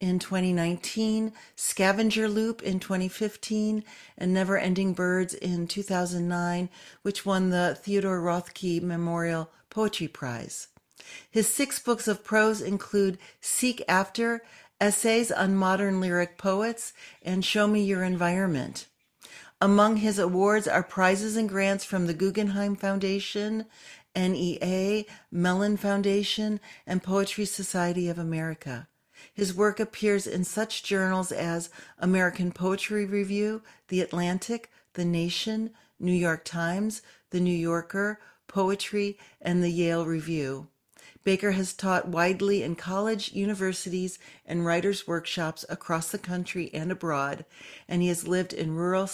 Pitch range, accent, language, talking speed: 175-205 Hz, American, English, 125 wpm